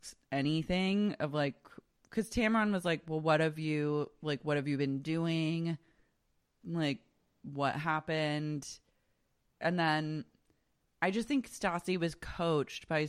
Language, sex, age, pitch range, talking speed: English, female, 20-39, 140-160 Hz, 135 wpm